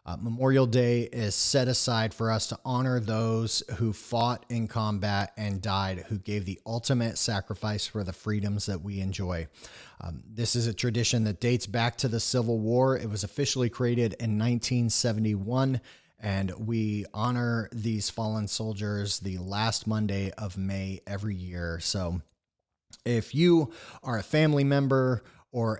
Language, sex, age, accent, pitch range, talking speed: English, male, 30-49, American, 100-120 Hz, 155 wpm